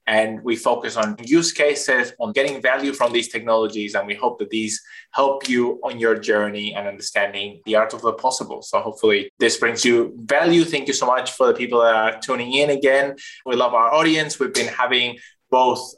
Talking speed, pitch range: 205 wpm, 110-135 Hz